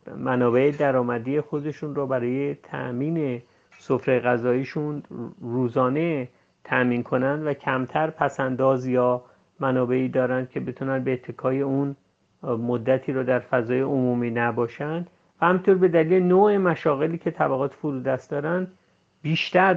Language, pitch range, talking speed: Persian, 125-155 Hz, 120 wpm